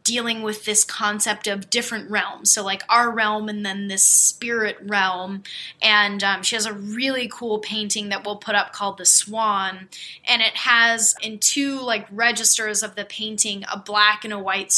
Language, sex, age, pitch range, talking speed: English, female, 10-29, 200-225 Hz, 185 wpm